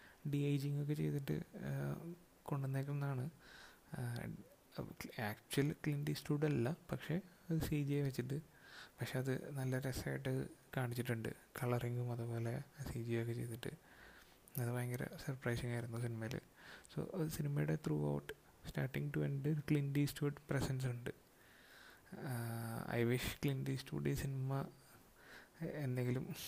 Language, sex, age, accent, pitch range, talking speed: Malayalam, male, 30-49, native, 120-145 Hz, 105 wpm